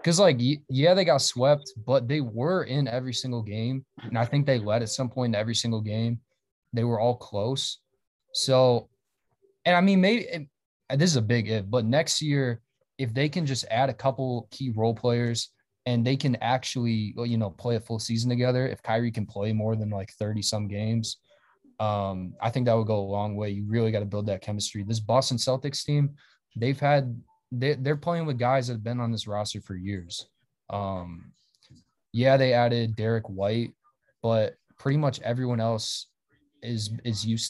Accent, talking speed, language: American, 190 wpm, English